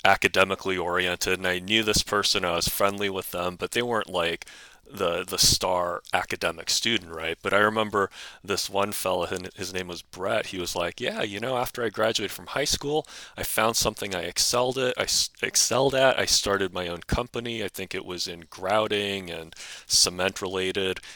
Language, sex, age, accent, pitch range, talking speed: English, male, 30-49, American, 90-100 Hz, 190 wpm